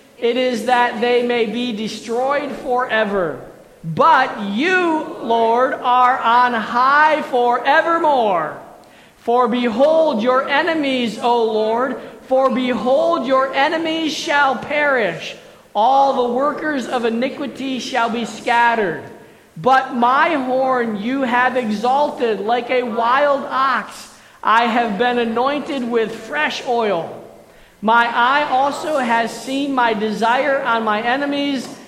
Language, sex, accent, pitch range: English, male, American, 235-275 Hz